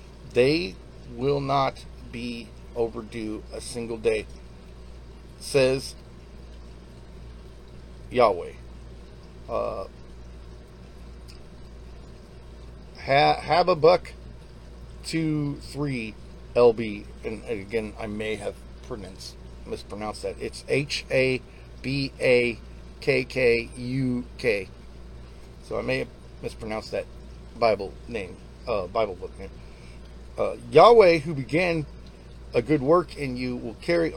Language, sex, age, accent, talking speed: English, male, 40-59, American, 80 wpm